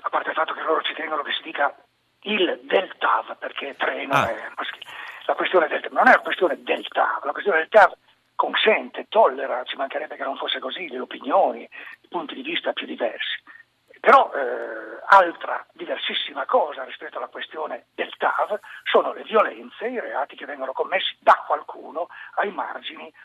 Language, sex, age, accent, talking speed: Italian, male, 40-59, native, 175 wpm